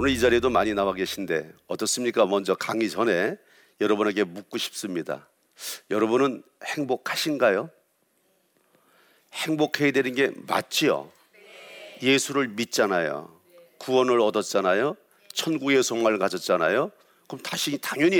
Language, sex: Korean, male